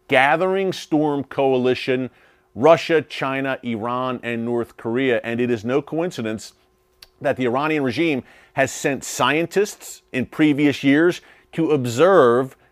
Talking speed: 125 wpm